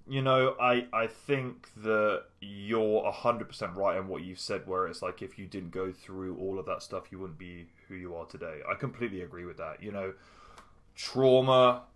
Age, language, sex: 20-39, English, male